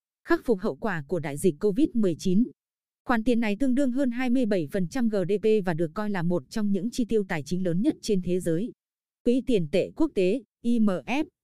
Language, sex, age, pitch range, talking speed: Vietnamese, female, 20-39, 185-240 Hz, 200 wpm